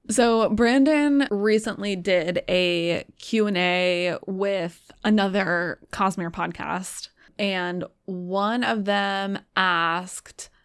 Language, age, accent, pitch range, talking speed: English, 20-39, American, 180-210 Hz, 85 wpm